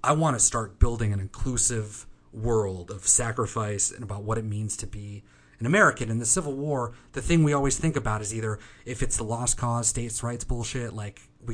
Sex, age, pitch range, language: male, 30-49, 105-130 Hz, English